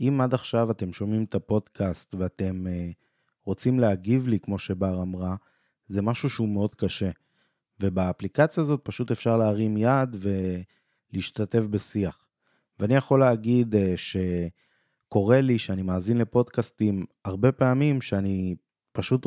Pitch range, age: 95-130 Hz, 20-39